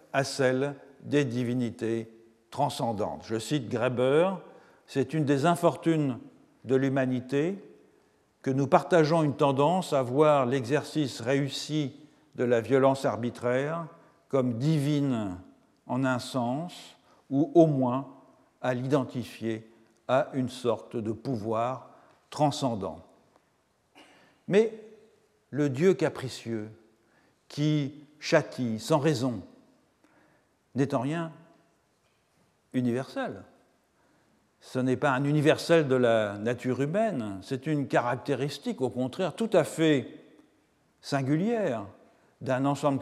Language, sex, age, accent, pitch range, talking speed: French, male, 50-69, French, 120-150 Hz, 105 wpm